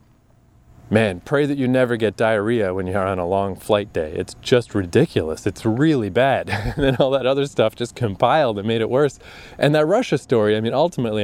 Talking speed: 210 wpm